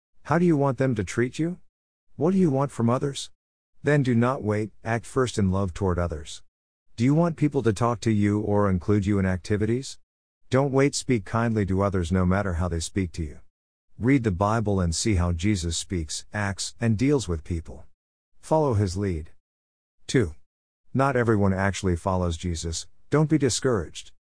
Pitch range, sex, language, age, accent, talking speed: 85-115 Hz, male, English, 50-69, American, 185 wpm